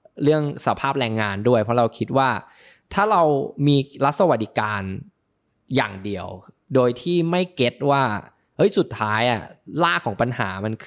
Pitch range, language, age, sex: 115-150 Hz, Thai, 20-39, male